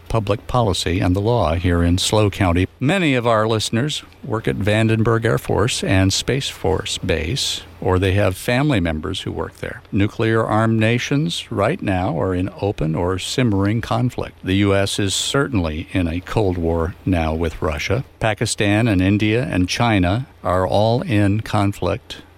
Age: 60-79